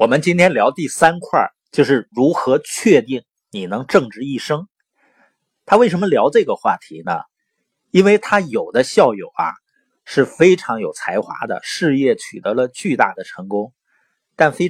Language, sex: Chinese, male